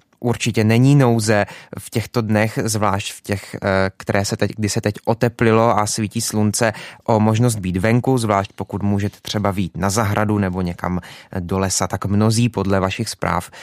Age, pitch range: 20-39, 100-115 Hz